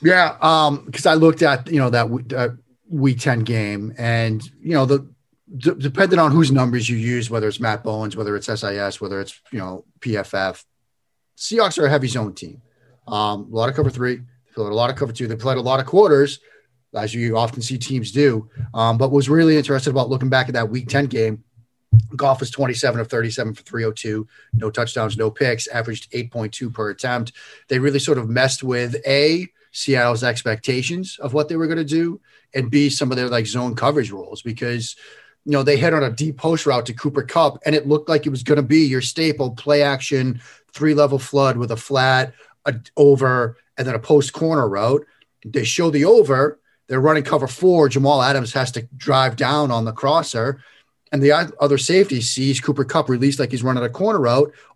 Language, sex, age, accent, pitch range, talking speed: English, male, 30-49, American, 120-145 Hz, 205 wpm